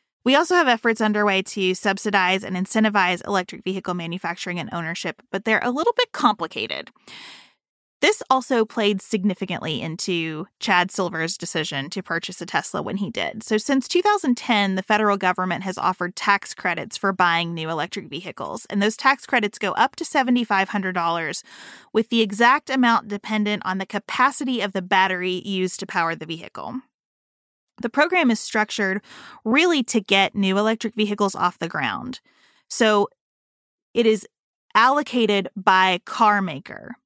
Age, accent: 30-49, American